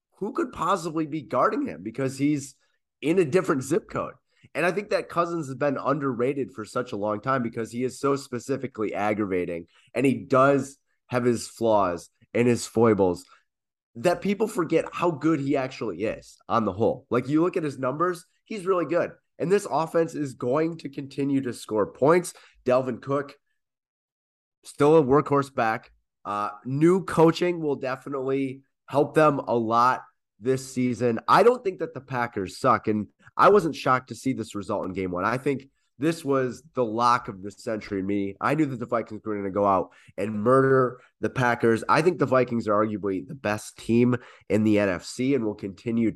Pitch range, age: 115-150 Hz, 30-49